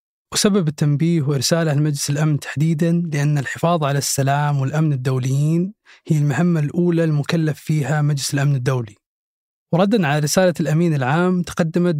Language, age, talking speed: Arabic, 20-39, 130 wpm